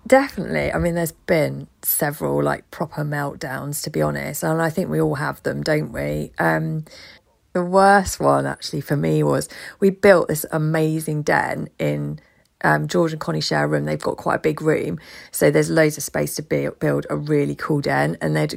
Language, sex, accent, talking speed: English, female, British, 195 wpm